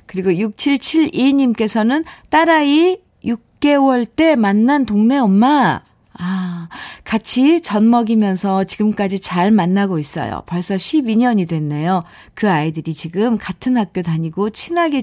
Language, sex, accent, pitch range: Korean, female, native, 185-250 Hz